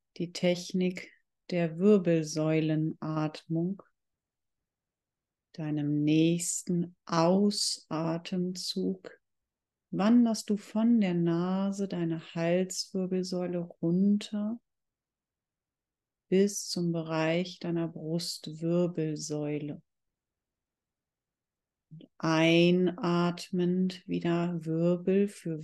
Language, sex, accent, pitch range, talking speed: German, female, German, 160-185 Hz, 55 wpm